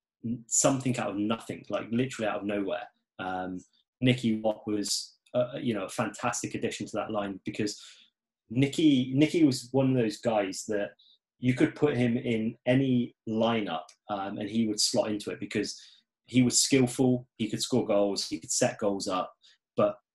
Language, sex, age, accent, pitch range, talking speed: English, male, 20-39, British, 105-125 Hz, 175 wpm